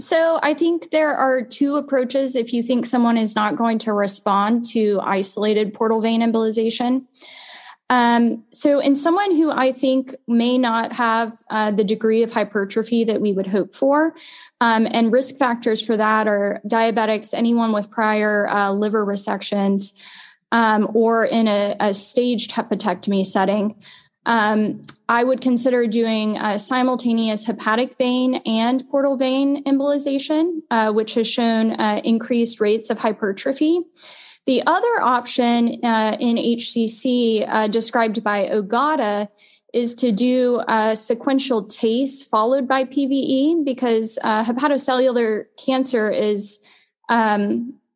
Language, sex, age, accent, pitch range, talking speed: English, female, 10-29, American, 215-255 Hz, 140 wpm